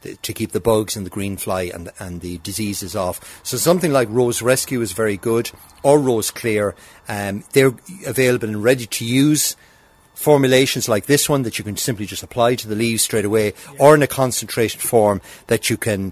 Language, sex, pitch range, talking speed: English, male, 105-140 Hz, 200 wpm